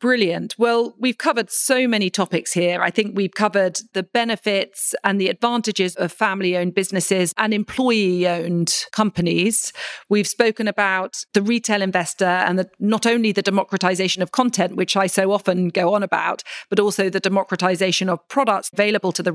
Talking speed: 160 wpm